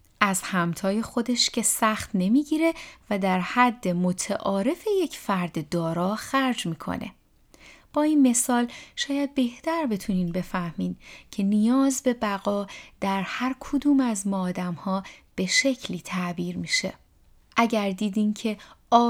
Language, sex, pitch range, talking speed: Persian, female, 190-260 Hz, 125 wpm